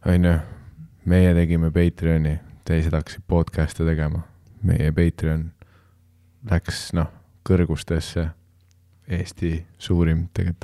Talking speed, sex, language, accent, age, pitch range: 90 wpm, male, English, Finnish, 20-39, 85-95 Hz